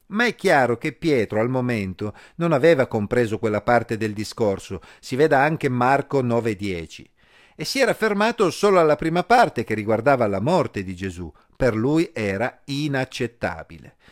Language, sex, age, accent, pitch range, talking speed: Italian, male, 50-69, native, 110-160 Hz, 155 wpm